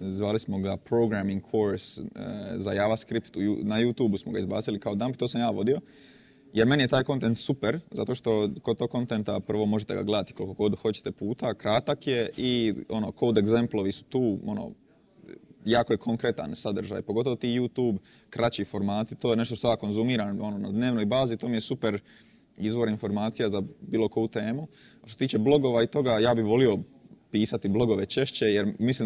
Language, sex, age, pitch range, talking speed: Croatian, male, 20-39, 105-120 Hz, 190 wpm